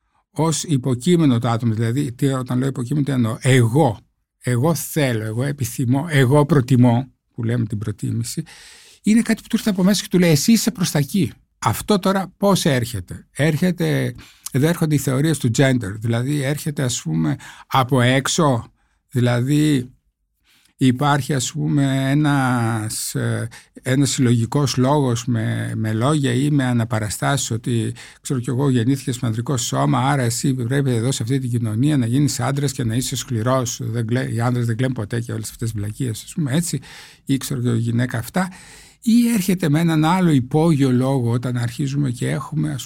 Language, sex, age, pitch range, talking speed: Greek, male, 60-79, 120-150 Hz, 170 wpm